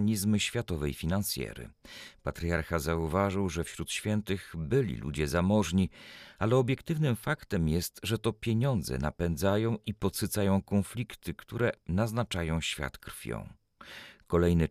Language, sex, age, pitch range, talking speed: Polish, male, 40-59, 85-115 Hz, 110 wpm